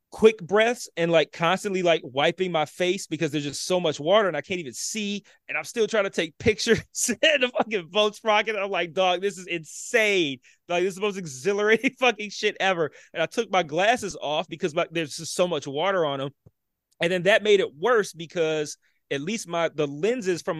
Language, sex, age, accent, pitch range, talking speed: English, male, 30-49, American, 155-195 Hz, 215 wpm